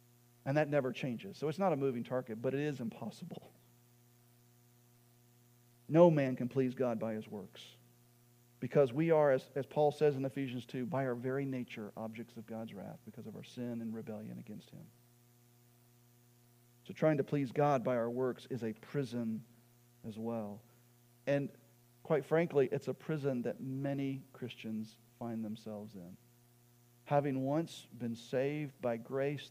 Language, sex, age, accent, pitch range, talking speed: English, male, 40-59, American, 120-130 Hz, 160 wpm